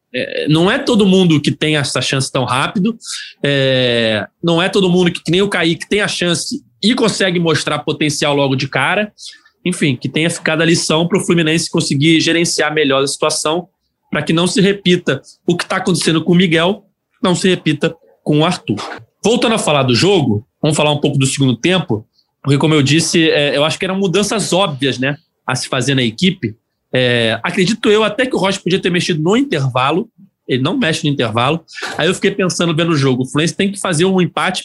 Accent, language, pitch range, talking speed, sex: Brazilian, Portuguese, 150-195 Hz, 210 wpm, male